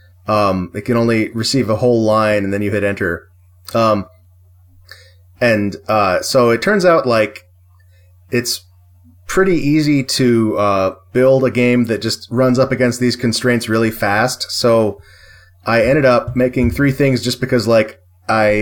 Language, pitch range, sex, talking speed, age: English, 90-120 Hz, male, 160 wpm, 30-49